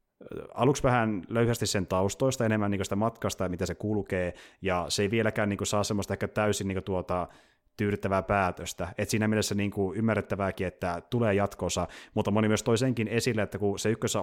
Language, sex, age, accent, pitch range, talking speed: Finnish, male, 30-49, native, 95-110 Hz, 200 wpm